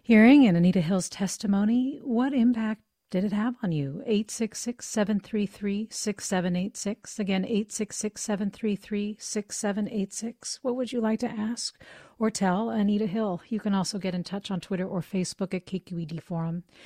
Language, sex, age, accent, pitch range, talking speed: English, female, 40-59, American, 165-210 Hz, 135 wpm